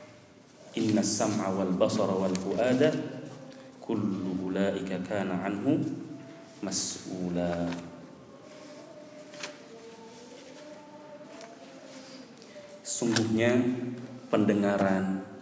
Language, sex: Indonesian, male